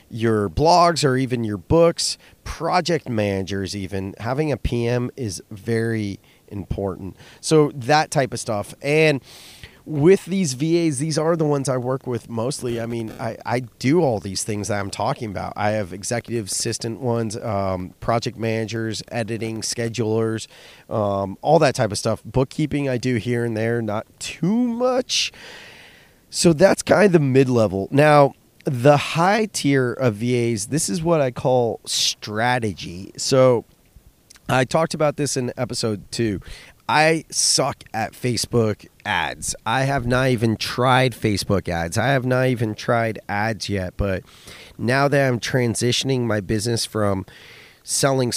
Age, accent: 30-49, American